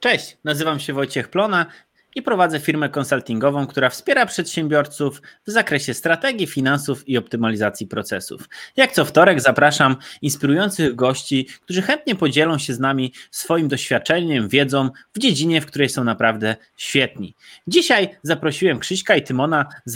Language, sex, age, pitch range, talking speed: Polish, male, 20-39, 130-160 Hz, 140 wpm